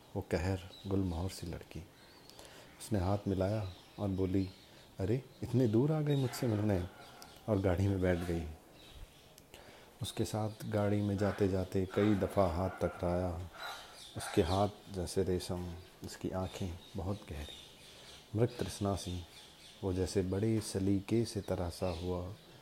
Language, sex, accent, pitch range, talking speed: Hindi, male, native, 90-105 Hz, 135 wpm